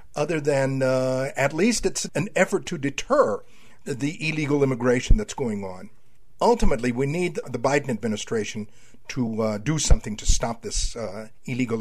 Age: 50-69